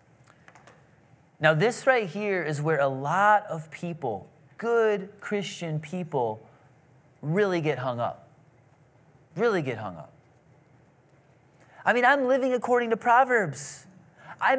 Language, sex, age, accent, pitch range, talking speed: English, male, 30-49, American, 150-250 Hz, 120 wpm